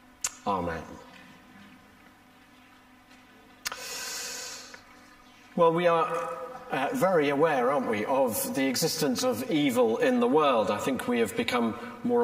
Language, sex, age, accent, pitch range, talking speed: English, male, 40-59, British, 220-255 Hz, 115 wpm